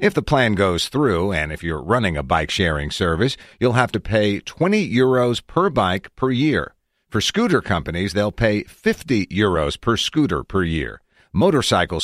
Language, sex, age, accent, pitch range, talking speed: English, male, 50-69, American, 85-115 Hz, 170 wpm